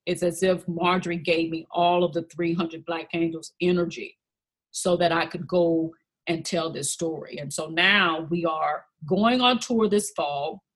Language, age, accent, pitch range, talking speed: English, 40-59, American, 165-205 Hz, 180 wpm